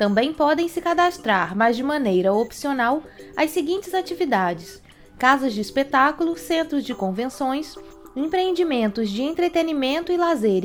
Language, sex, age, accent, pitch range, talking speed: Portuguese, female, 20-39, Brazilian, 230-340 Hz, 125 wpm